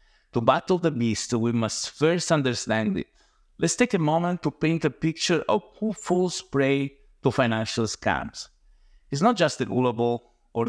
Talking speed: 170 wpm